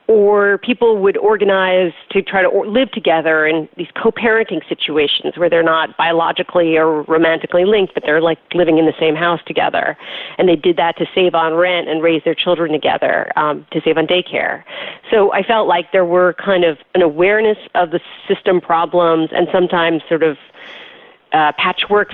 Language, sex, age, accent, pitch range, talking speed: English, female, 40-59, American, 165-195 Hz, 185 wpm